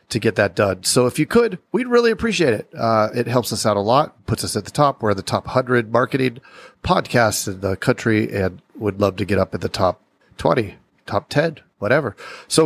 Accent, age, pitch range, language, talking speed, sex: American, 40-59, 105-125 Hz, English, 230 wpm, male